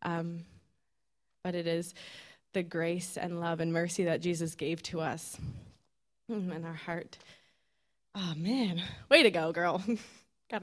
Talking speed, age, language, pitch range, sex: 140 wpm, 20-39, English, 175-240 Hz, female